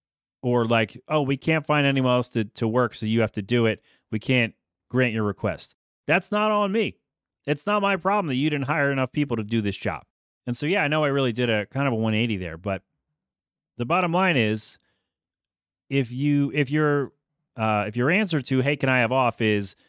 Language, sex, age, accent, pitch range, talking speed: English, male, 30-49, American, 110-150 Hz, 225 wpm